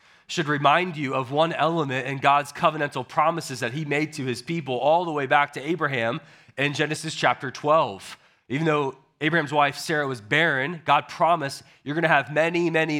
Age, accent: 30-49, American